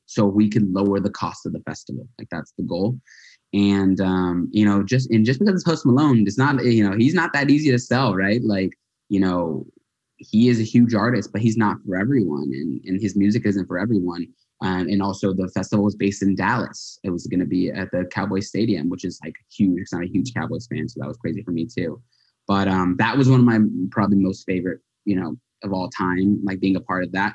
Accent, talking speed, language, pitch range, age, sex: American, 245 wpm, English, 95-115 Hz, 20-39, male